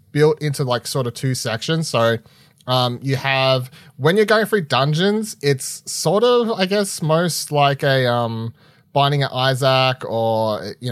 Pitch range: 115-145 Hz